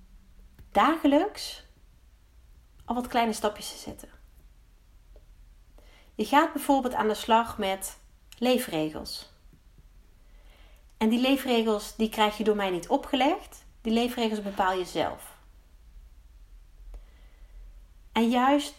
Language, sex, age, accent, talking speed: Dutch, female, 30-49, Dutch, 100 wpm